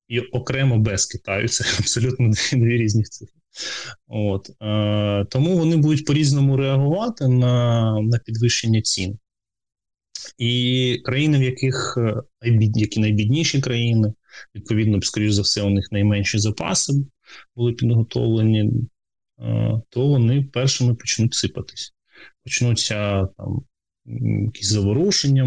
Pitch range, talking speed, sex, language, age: 105-125 Hz, 105 wpm, male, Ukrainian, 20-39